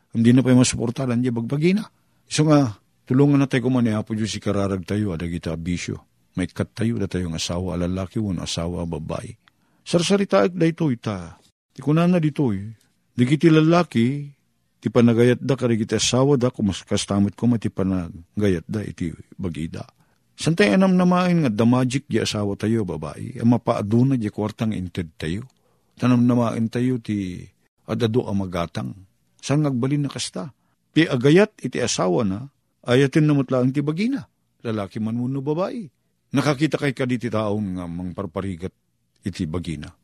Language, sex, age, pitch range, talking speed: Filipino, male, 50-69, 100-145 Hz, 155 wpm